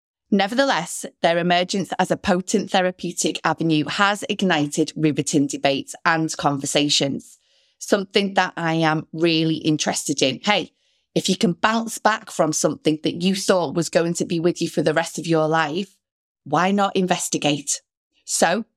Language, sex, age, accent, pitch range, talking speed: English, female, 30-49, British, 170-215 Hz, 155 wpm